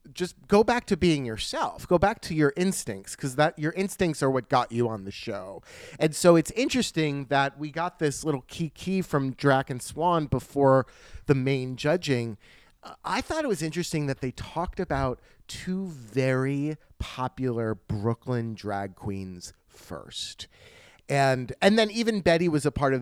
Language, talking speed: English, 175 wpm